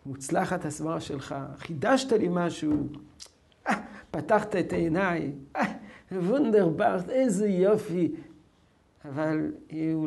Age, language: 50-69, Hebrew